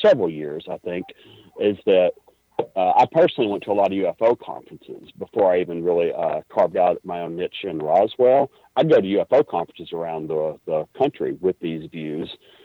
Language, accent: English, American